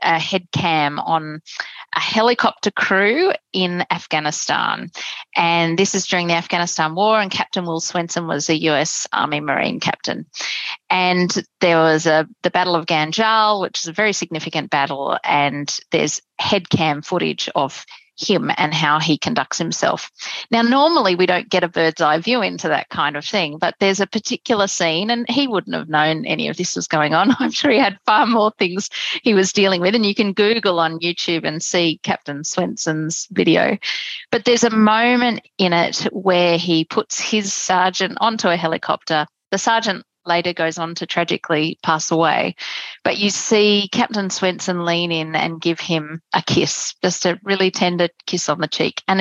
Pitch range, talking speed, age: 165-210 Hz, 180 wpm, 30-49